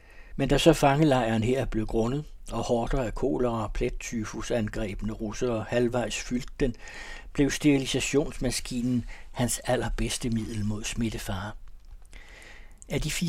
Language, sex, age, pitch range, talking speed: Danish, male, 60-79, 110-140 Hz, 115 wpm